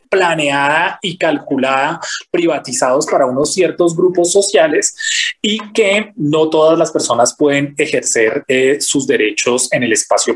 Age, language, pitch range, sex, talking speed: 30-49, Spanish, 140-195 Hz, male, 135 wpm